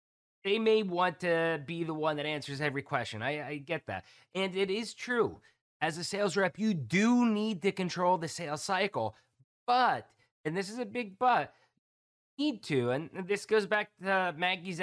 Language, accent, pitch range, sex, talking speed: English, American, 140-195 Hz, male, 190 wpm